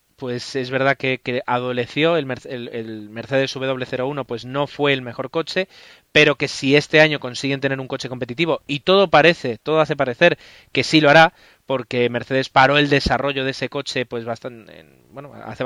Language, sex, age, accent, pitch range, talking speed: Spanish, male, 30-49, Spanish, 125-150 Hz, 190 wpm